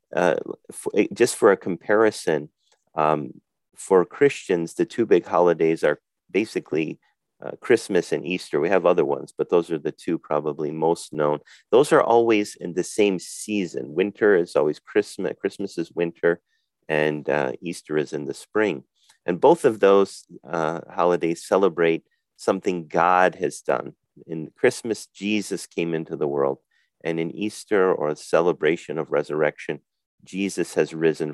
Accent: American